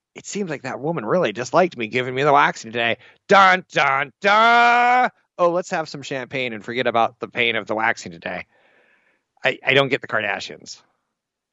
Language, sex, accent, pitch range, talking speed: English, male, American, 115-155 Hz, 185 wpm